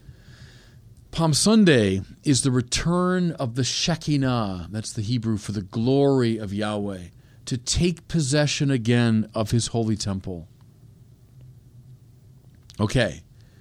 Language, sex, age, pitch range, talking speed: English, male, 40-59, 110-130 Hz, 110 wpm